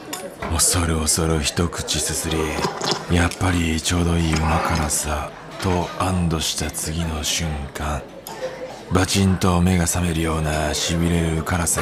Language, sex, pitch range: Japanese, male, 80-90 Hz